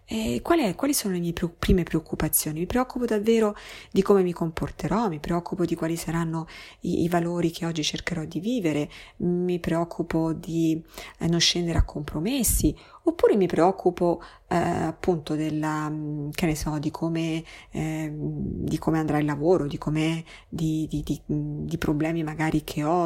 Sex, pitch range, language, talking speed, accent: female, 155-190 Hz, Italian, 165 wpm, native